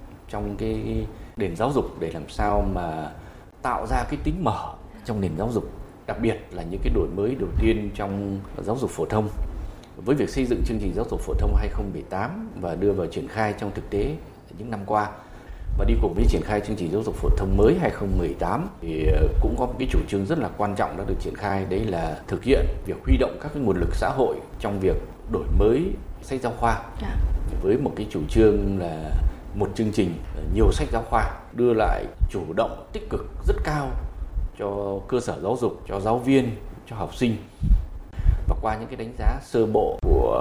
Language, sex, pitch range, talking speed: Vietnamese, male, 90-110 Hz, 215 wpm